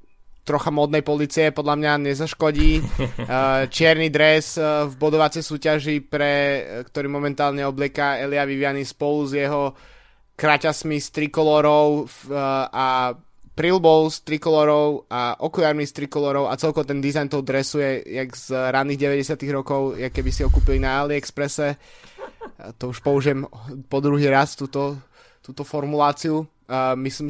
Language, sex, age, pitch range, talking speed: Slovak, male, 20-39, 130-150 Hz, 130 wpm